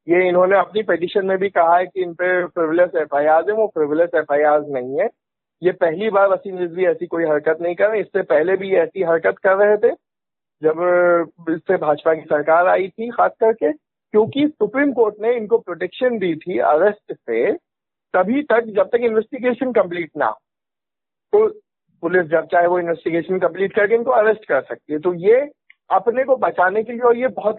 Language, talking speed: Hindi, 190 wpm